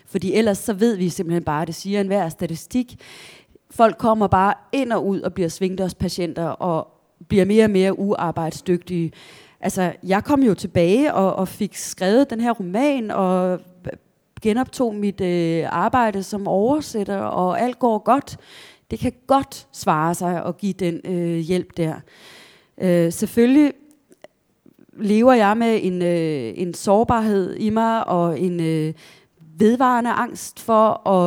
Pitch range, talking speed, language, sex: 175-220 Hz, 155 wpm, Danish, female